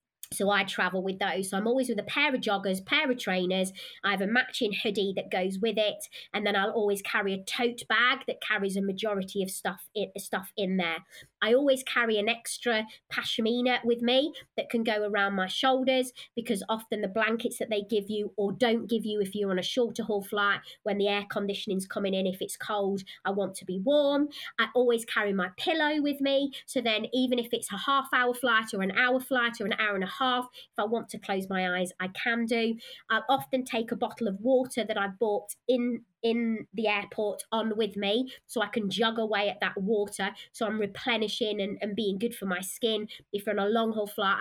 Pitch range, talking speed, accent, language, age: 195-240 Hz, 225 wpm, British, English, 20-39